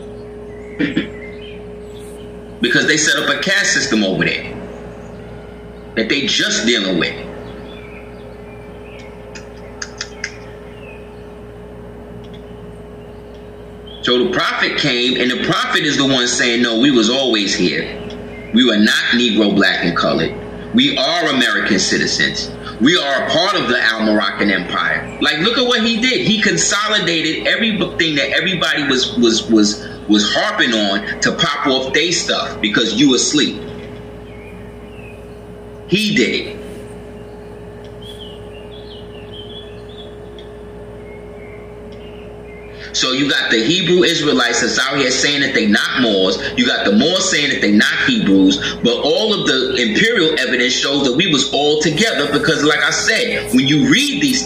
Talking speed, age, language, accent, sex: 135 wpm, 30-49, English, American, male